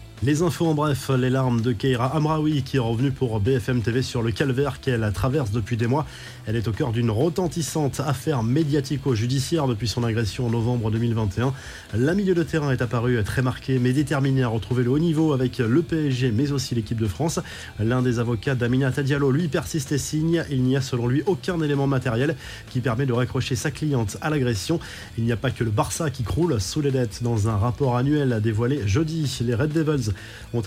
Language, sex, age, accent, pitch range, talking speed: French, male, 20-39, French, 120-155 Hz, 210 wpm